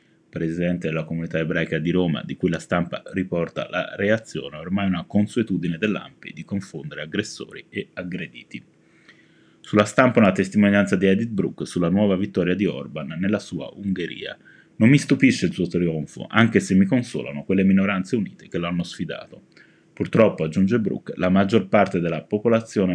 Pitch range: 90-110 Hz